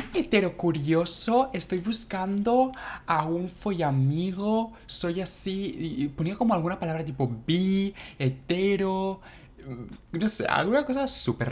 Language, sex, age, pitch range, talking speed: Spanish, male, 20-39, 115-175 Hz, 115 wpm